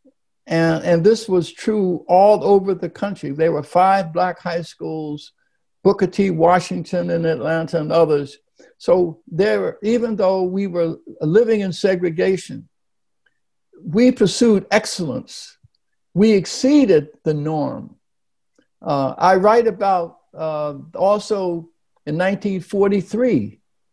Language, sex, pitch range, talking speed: English, male, 165-200 Hz, 115 wpm